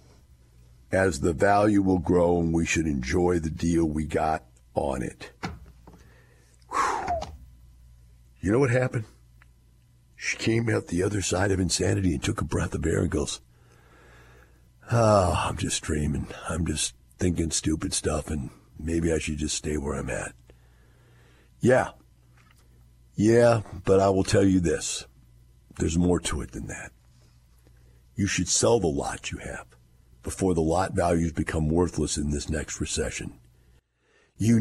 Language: English